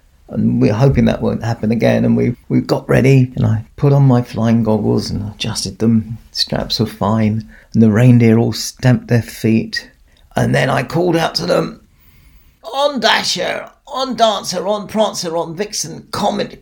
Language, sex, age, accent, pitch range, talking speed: English, male, 40-59, British, 115-185 Hz, 175 wpm